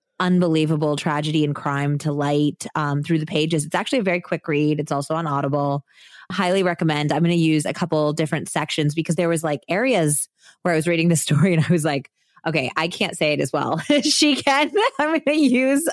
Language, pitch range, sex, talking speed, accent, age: English, 160-205 Hz, female, 215 wpm, American, 20-39